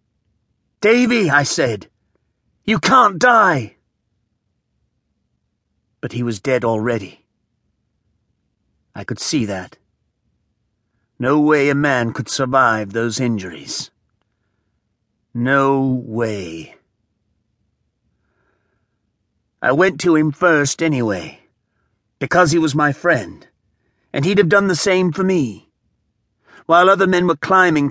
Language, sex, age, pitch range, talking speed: English, male, 40-59, 110-160 Hz, 105 wpm